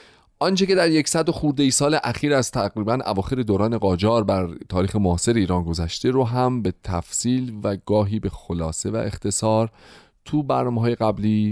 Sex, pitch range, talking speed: male, 100-135 Hz, 160 wpm